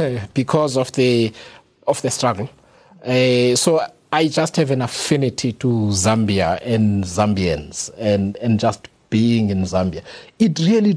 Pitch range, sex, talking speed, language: 110-155 Hz, male, 135 wpm, English